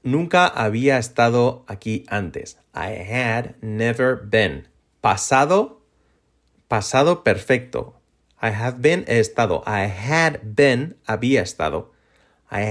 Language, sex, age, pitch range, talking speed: Spanish, male, 30-49, 100-125 Hz, 110 wpm